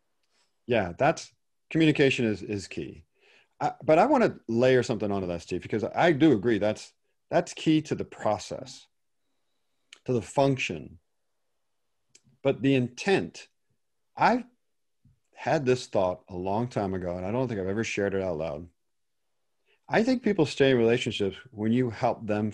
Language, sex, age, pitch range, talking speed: English, male, 40-59, 100-140 Hz, 160 wpm